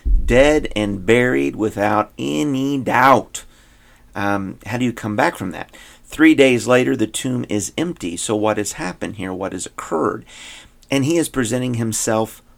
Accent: American